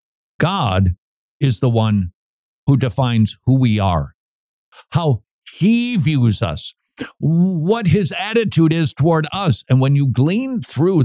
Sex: male